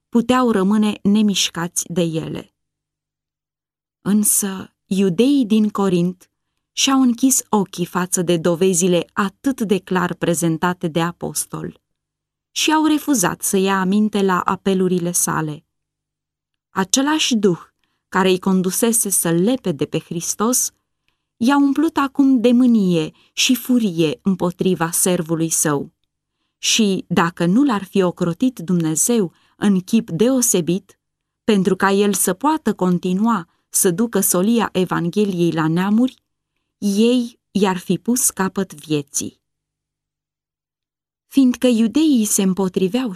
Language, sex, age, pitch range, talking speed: Romanian, female, 20-39, 180-235 Hz, 115 wpm